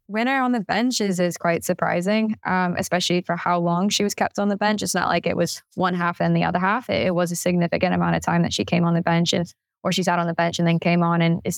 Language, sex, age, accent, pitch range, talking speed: English, female, 10-29, American, 170-195 Hz, 295 wpm